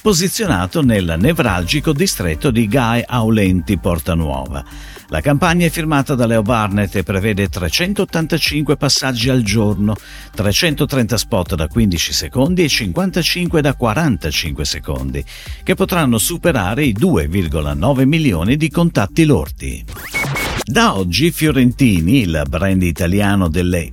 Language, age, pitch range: Italian, 50-69, 90-145 Hz